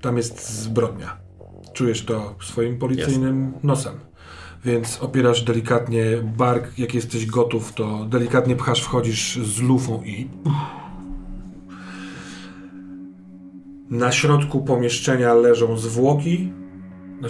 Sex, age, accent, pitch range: male, 30-49, native, 105-130 Hz